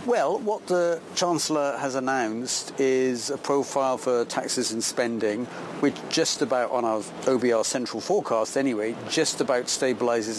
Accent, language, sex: British, English, male